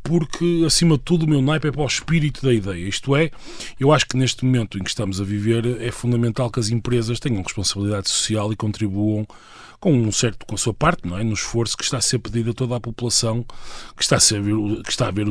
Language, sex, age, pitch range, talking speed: Portuguese, male, 20-39, 105-130 Hz, 225 wpm